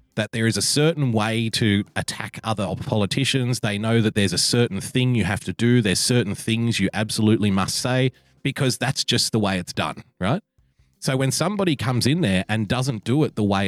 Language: English